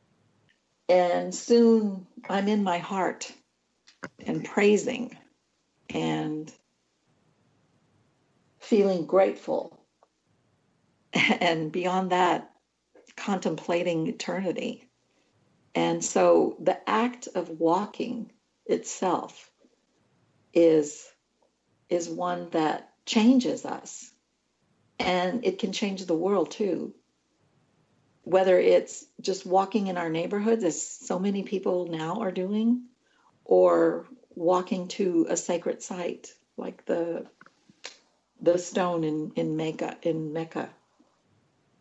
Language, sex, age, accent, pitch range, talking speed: English, female, 60-79, American, 165-225 Hz, 95 wpm